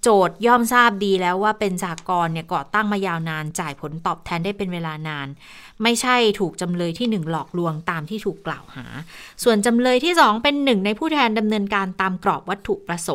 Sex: female